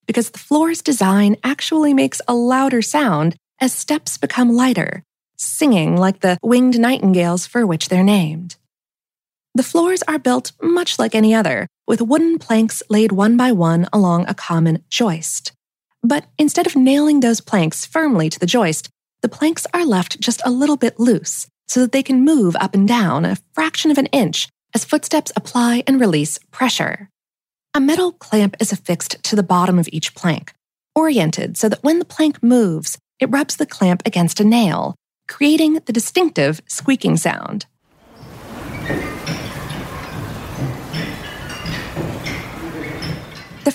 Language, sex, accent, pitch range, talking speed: English, female, American, 185-270 Hz, 150 wpm